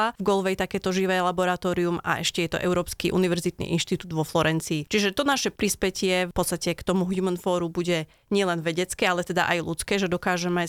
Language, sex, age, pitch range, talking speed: Slovak, female, 30-49, 170-190 Hz, 185 wpm